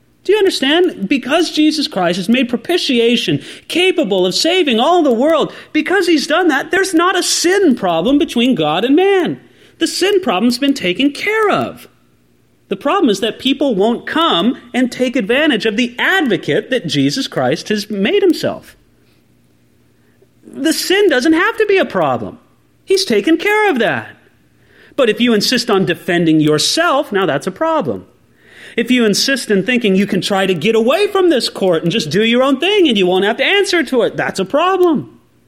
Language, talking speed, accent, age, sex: English, 185 wpm, American, 30-49, male